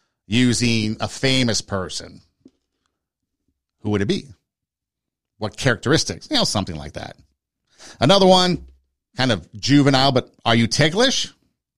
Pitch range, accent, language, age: 95-130 Hz, American, English, 50-69